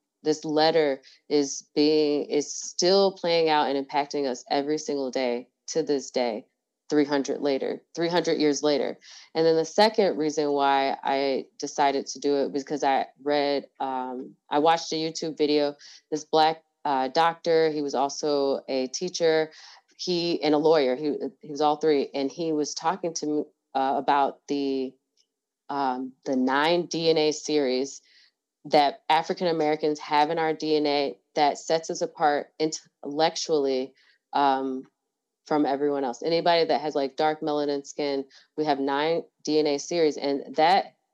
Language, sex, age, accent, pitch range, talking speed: English, female, 20-39, American, 140-160 Hz, 150 wpm